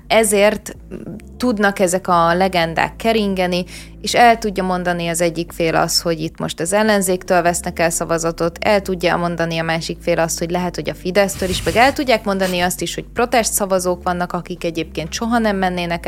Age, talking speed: 20-39, 185 wpm